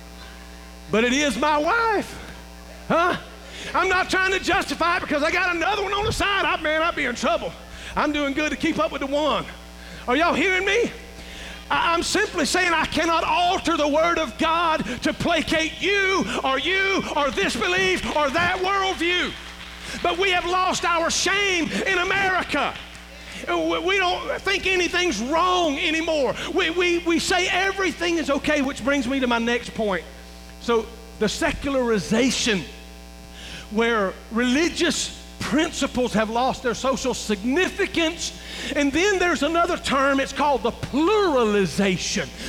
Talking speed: 155 wpm